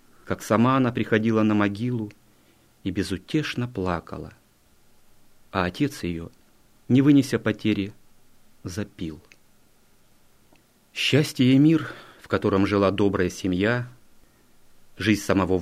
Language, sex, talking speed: Russian, male, 100 wpm